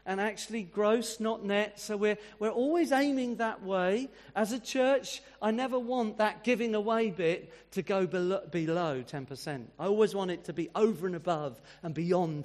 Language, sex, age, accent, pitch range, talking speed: English, male, 40-59, British, 155-215 Hz, 185 wpm